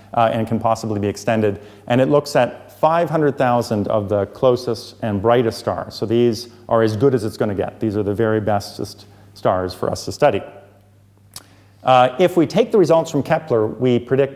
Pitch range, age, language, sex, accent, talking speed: 100-130 Hz, 40-59, English, male, American, 195 wpm